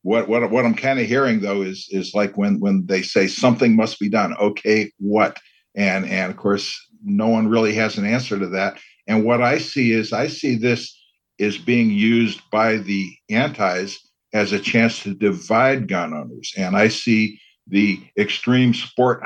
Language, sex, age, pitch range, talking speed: English, male, 60-79, 110-130 Hz, 185 wpm